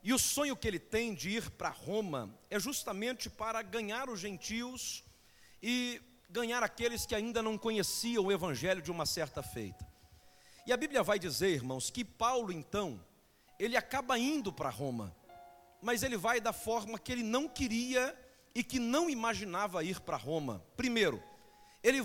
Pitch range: 170-245 Hz